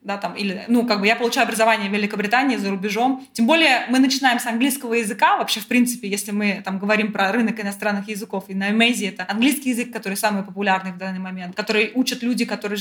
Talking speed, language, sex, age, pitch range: 220 wpm, Russian, female, 20-39, 210-250 Hz